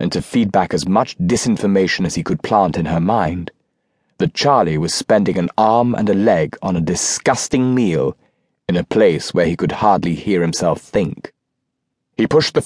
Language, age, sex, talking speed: English, 30-49, male, 190 wpm